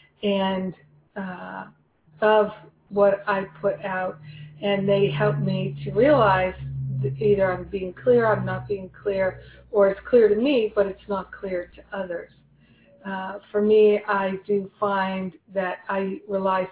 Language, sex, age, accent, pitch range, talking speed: English, female, 40-59, American, 180-205 Hz, 155 wpm